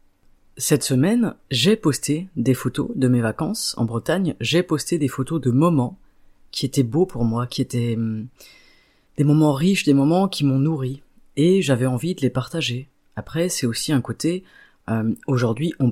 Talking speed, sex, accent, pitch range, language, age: 175 wpm, female, French, 125-165 Hz, French, 30-49